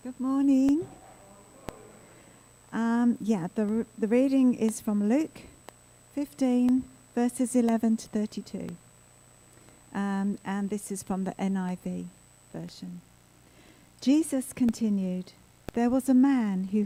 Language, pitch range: English, 185-230 Hz